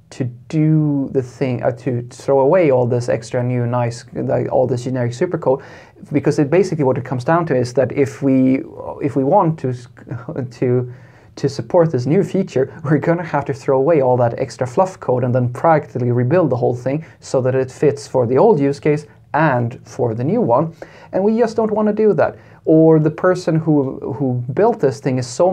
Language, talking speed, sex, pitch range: English, 210 wpm, male, 125-160 Hz